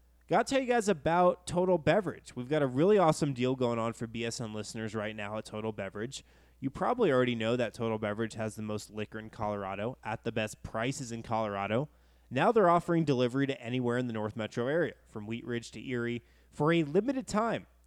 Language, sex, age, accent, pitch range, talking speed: English, male, 20-39, American, 115-145 Hz, 210 wpm